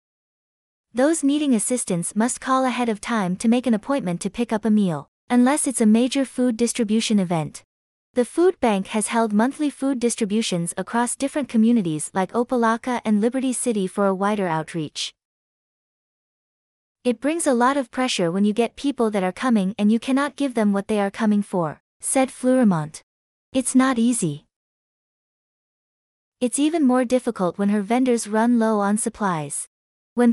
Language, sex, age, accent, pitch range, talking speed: English, female, 20-39, American, 205-255 Hz, 165 wpm